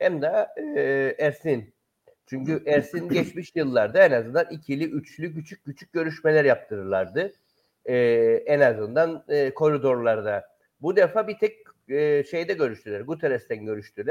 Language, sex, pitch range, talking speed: Turkish, male, 130-190 Hz, 125 wpm